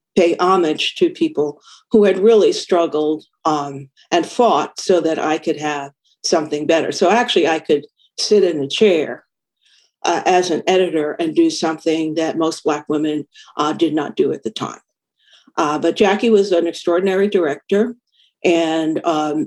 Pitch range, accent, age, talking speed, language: 150-185 Hz, American, 50-69, 165 wpm, English